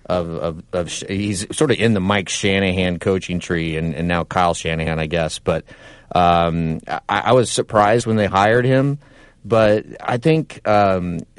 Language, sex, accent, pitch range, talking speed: English, male, American, 95-125 Hz, 170 wpm